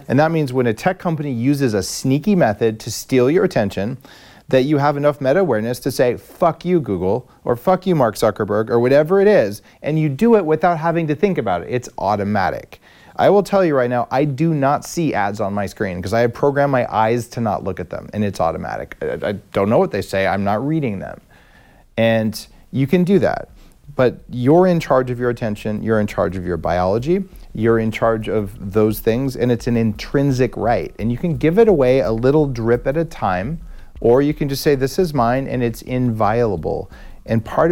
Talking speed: 220 wpm